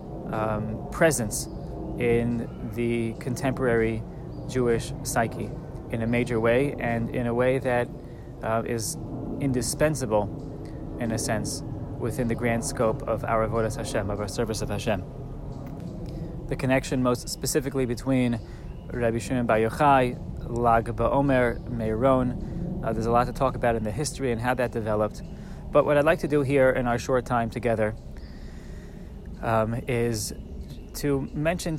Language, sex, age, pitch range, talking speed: English, male, 20-39, 110-130 Hz, 145 wpm